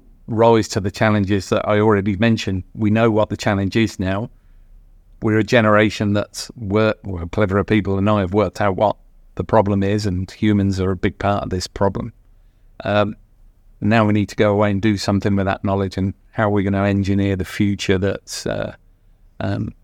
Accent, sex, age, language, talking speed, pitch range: British, male, 40-59, English, 200 wpm, 95-110 Hz